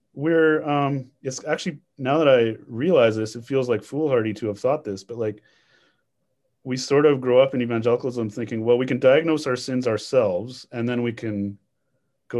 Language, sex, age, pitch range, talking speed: English, male, 30-49, 105-140 Hz, 190 wpm